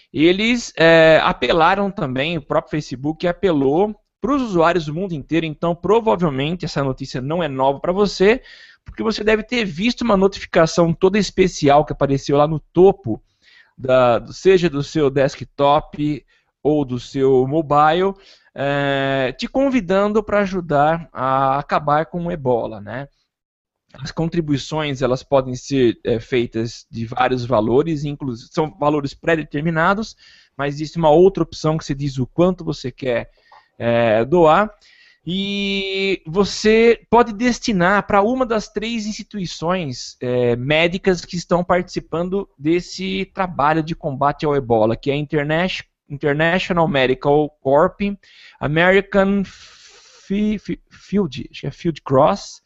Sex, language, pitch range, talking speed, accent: male, Portuguese, 140-195 Hz, 135 wpm, Brazilian